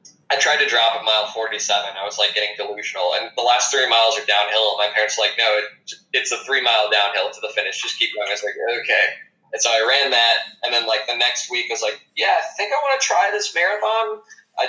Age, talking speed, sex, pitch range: 20-39, 255 wpm, male, 110-160 Hz